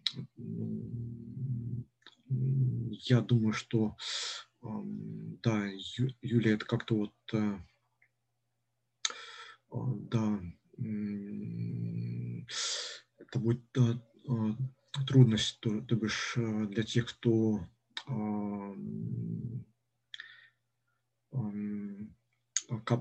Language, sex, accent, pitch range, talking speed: Russian, male, native, 110-125 Hz, 50 wpm